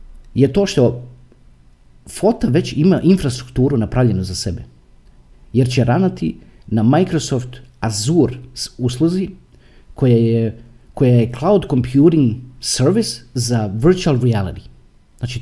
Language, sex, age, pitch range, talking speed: Croatian, male, 40-59, 120-155 Hz, 110 wpm